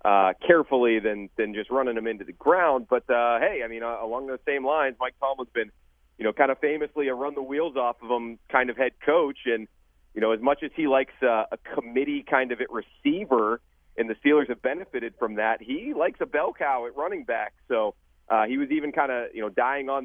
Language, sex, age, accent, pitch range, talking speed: English, male, 30-49, American, 105-135 Hz, 240 wpm